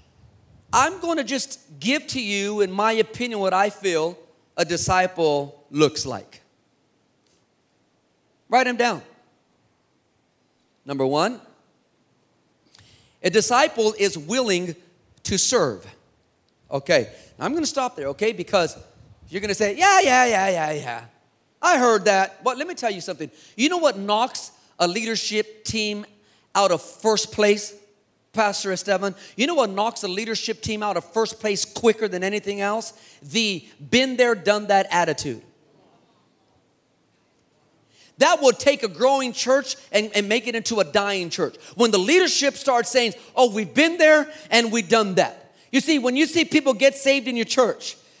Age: 40-59